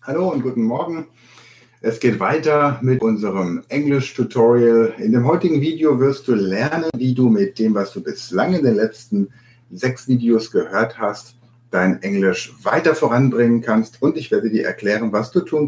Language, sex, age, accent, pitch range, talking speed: German, male, 60-79, German, 115-140 Hz, 170 wpm